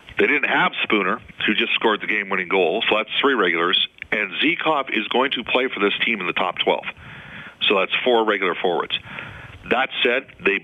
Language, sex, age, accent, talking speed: English, male, 40-59, American, 195 wpm